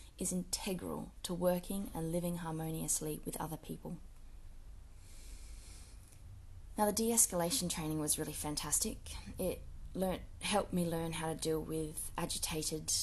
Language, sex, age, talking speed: English, female, 20-39, 125 wpm